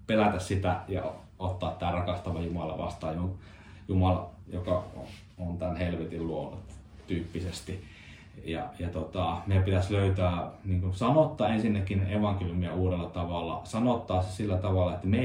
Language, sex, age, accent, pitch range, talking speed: Finnish, male, 30-49, native, 90-100 Hz, 130 wpm